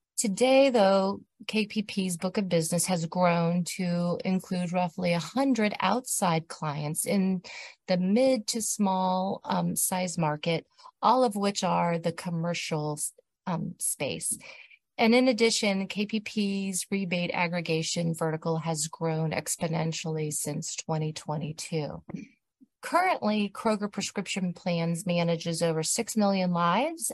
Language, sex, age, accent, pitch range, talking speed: English, female, 30-49, American, 165-210 Hz, 115 wpm